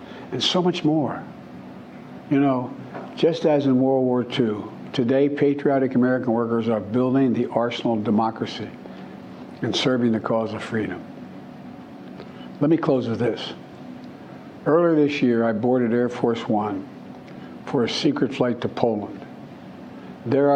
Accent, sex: American, male